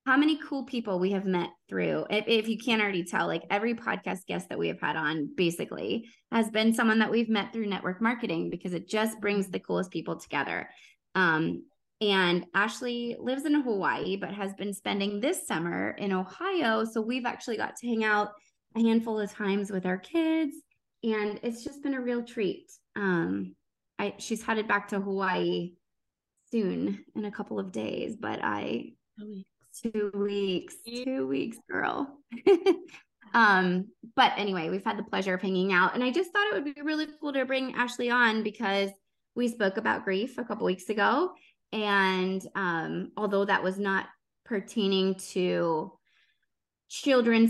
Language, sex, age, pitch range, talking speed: English, female, 20-39, 190-240 Hz, 175 wpm